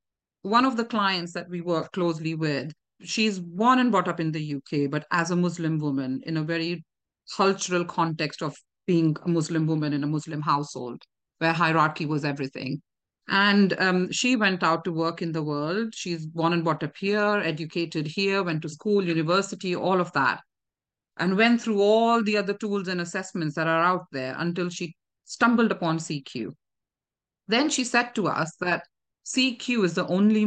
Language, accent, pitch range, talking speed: English, Indian, 160-200 Hz, 185 wpm